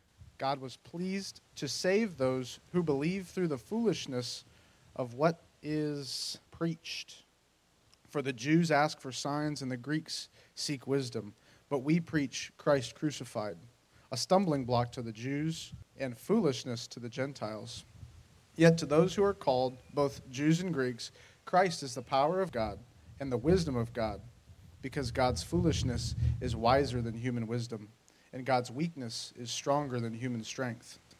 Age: 40-59